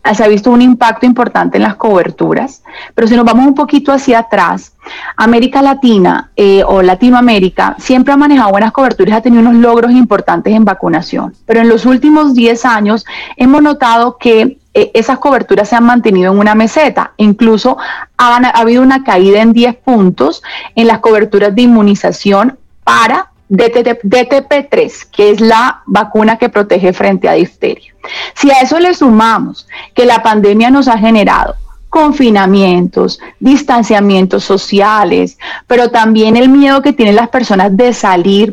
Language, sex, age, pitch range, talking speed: Spanish, female, 30-49, 205-260 Hz, 155 wpm